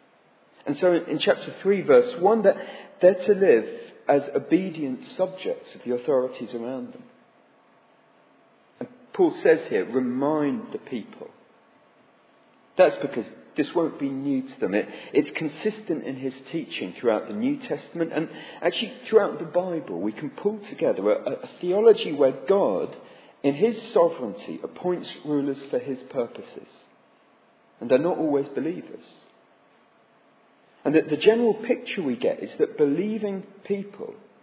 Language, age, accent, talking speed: English, 40-59, British, 145 wpm